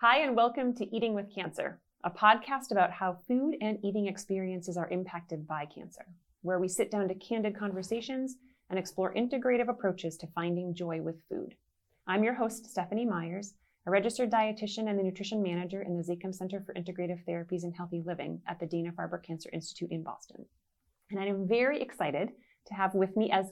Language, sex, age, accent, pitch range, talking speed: English, female, 30-49, American, 170-215 Hz, 190 wpm